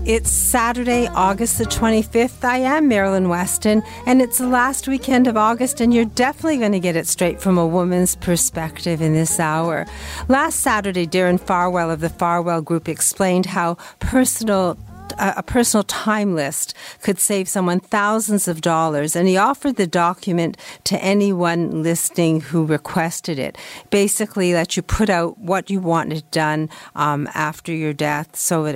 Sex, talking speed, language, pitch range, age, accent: female, 165 wpm, English, 160-200 Hz, 50-69, American